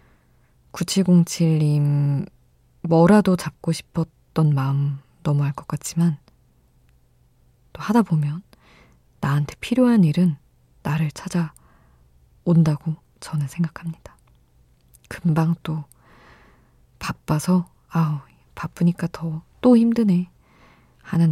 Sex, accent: female, native